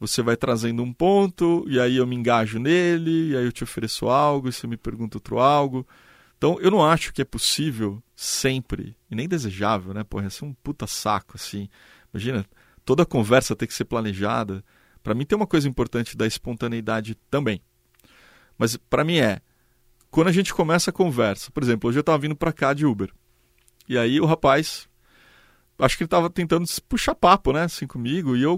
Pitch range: 110-165 Hz